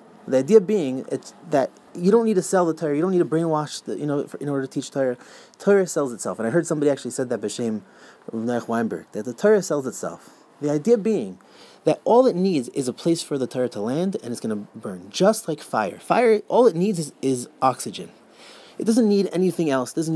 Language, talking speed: English, 240 wpm